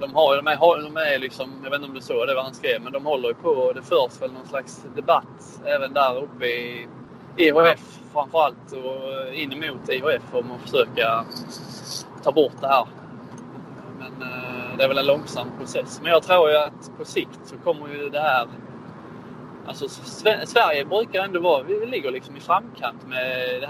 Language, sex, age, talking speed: Swedish, male, 20-39, 195 wpm